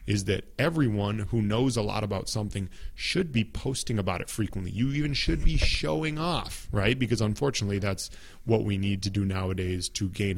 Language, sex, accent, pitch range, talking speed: English, male, American, 95-120 Hz, 190 wpm